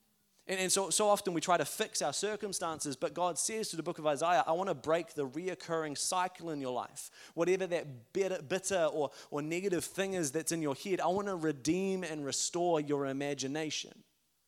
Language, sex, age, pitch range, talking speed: English, male, 30-49, 155-185 Hz, 180 wpm